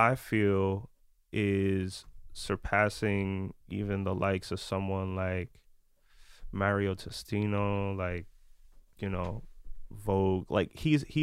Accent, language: American, English